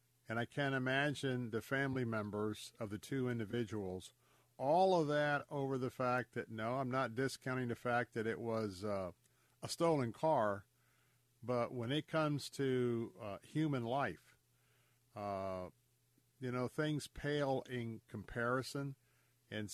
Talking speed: 145 wpm